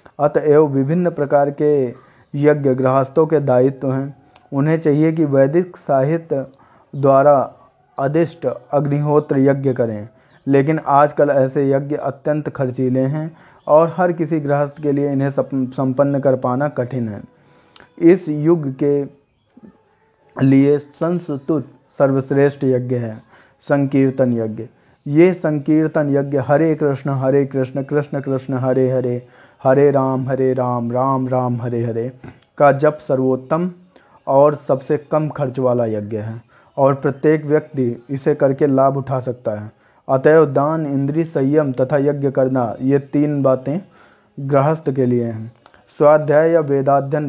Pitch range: 130-150 Hz